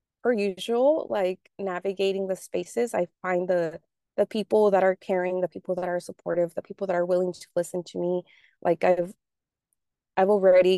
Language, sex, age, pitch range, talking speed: English, female, 20-39, 175-200 Hz, 180 wpm